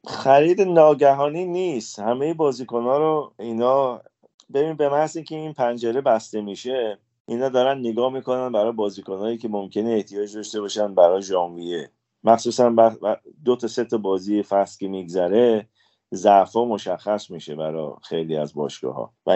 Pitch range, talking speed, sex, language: 90-115 Hz, 145 wpm, male, Persian